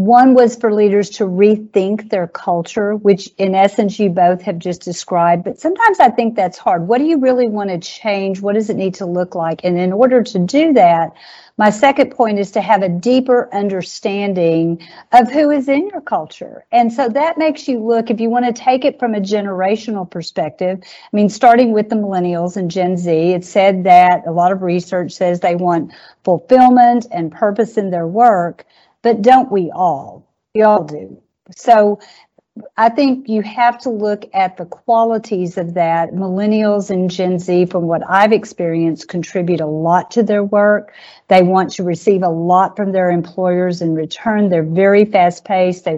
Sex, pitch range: female, 180-225 Hz